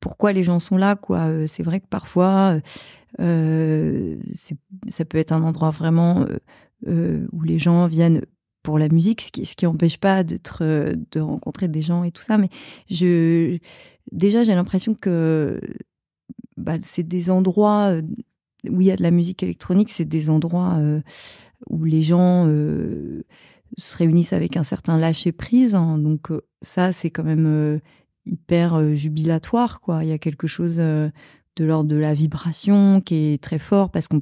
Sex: female